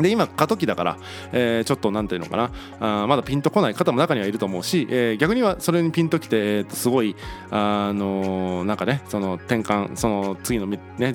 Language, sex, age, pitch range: Japanese, male, 20-39, 105-175 Hz